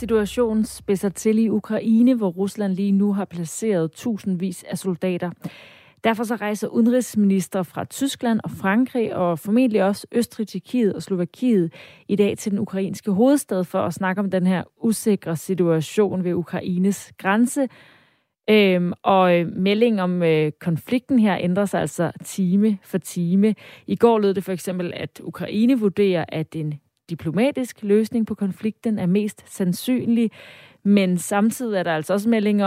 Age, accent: 30-49, native